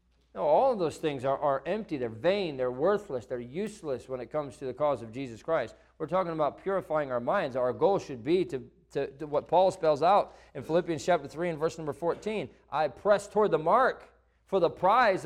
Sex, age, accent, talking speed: male, 40-59, American, 215 wpm